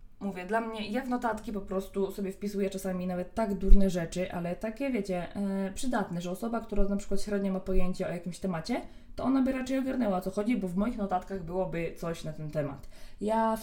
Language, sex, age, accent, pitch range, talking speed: Polish, female, 20-39, native, 170-200 Hz, 210 wpm